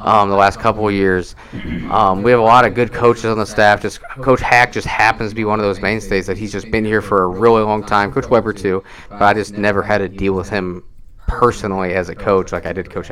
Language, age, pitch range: English, 30-49, 95-110 Hz